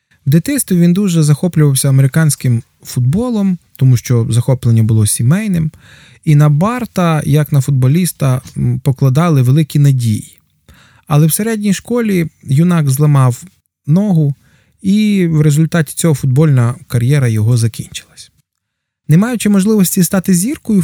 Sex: male